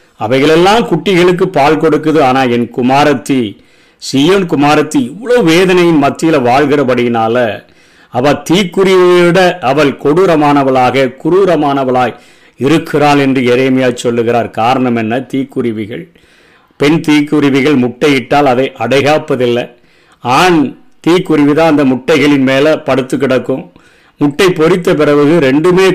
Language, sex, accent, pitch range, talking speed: Tamil, male, native, 130-165 Hz, 95 wpm